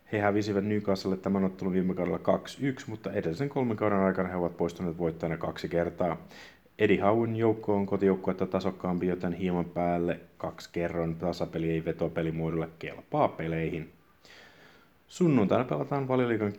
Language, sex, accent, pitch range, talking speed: Finnish, male, native, 85-100 Hz, 135 wpm